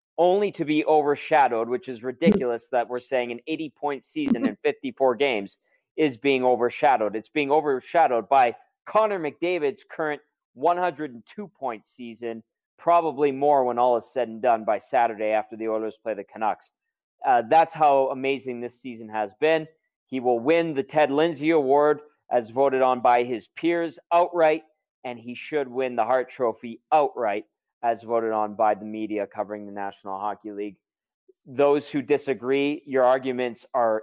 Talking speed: 160 wpm